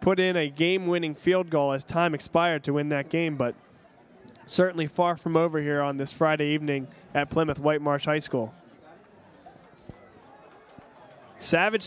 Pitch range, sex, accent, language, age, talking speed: 160-200 Hz, male, American, English, 20-39, 145 wpm